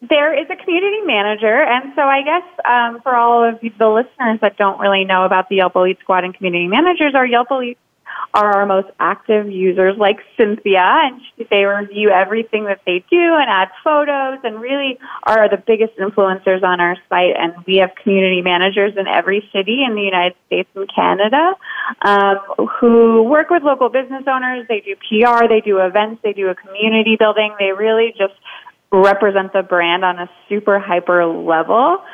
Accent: American